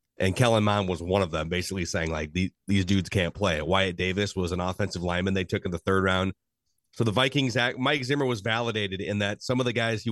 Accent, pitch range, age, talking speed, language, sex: American, 95-125 Hz, 30-49, 245 wpm, English, male